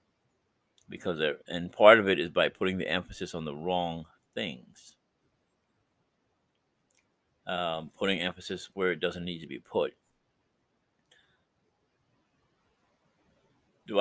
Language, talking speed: English, 110 wpm